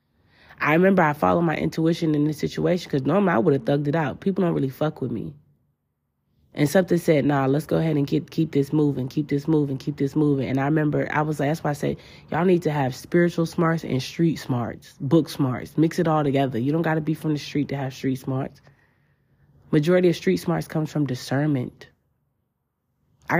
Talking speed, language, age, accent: 220 wpm, English, 20-39, American